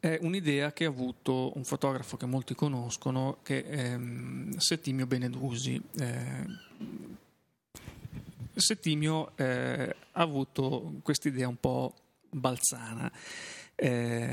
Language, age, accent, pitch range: Italian, 30-49, native, 125-145 Hz